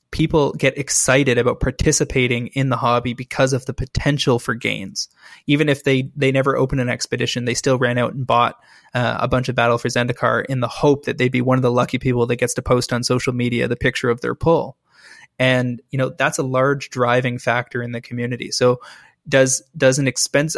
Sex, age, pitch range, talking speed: male, 20-39, 120-135 Hz, 215 wpm